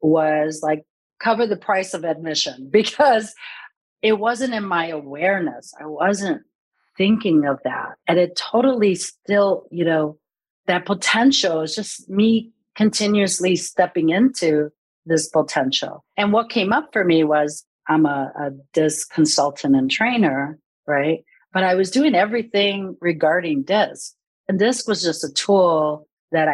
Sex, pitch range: female, 155-220 Hz